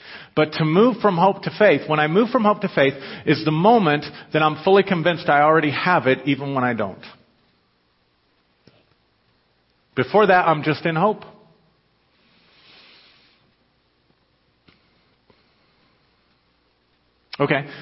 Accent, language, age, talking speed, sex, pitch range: American, English, 50-69, 120 wpm, male, 115-165 Hz